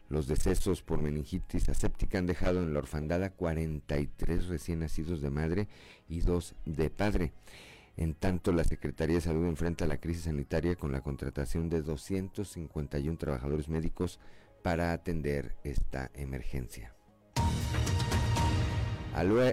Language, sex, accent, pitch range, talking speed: Spanish, male, Mexican, 80-95 Hz, 125 wpm